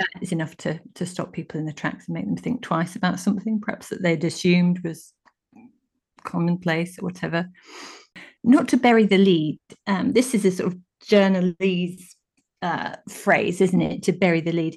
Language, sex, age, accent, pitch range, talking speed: English, female, 30-49, British, 170-210 Hz, 180 wpm